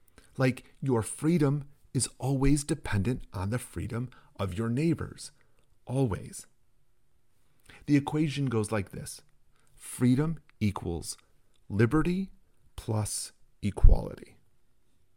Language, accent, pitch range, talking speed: English, American, 105-150 Hz, 90 wpm